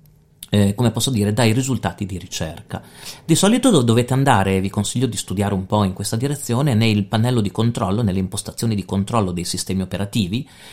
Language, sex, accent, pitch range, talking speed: Italian, male, native, 95-130 Hz, 185 wpm